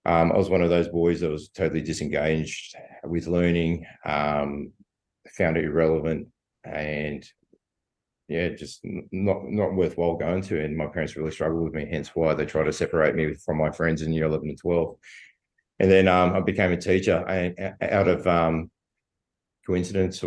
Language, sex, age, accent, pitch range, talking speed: English, male, 30-49, Australian, 80-90 Hz, 175 wpm